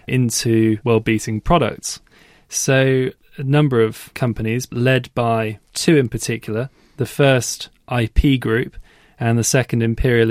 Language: English